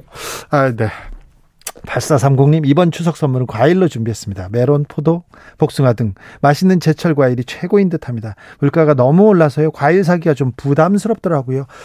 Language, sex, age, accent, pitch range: Korean, male, 40-59, native, 135-175 Hz